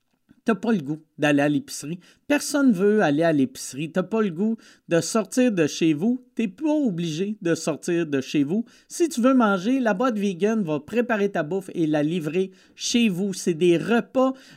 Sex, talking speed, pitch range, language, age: male, 215 wpm, 175-240 Hz, French, 50-69